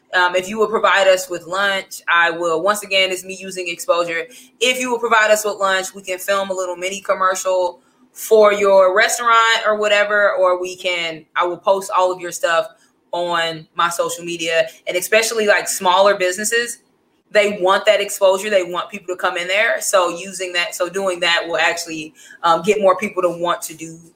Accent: American